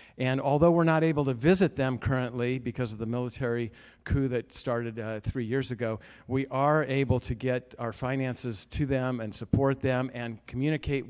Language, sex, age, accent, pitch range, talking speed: English, male, 50-69, American, 125-150 Hz, 185 wpm